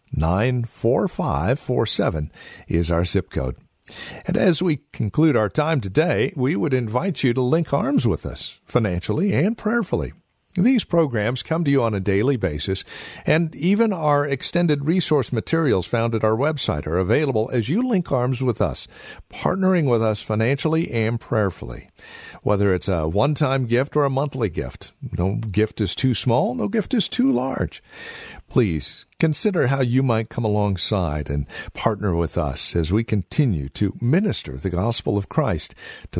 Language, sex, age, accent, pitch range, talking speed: English, male, 50-69, American, 95-145 Hz, 160 wpm